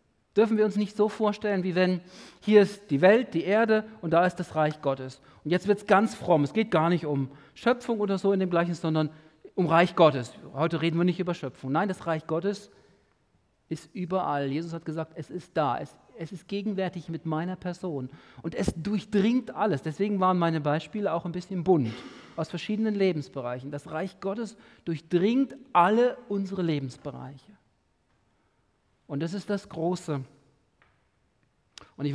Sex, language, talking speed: male, German, 175 wpm